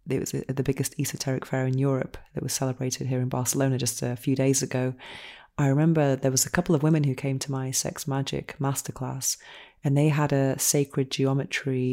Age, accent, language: 30-49, British, English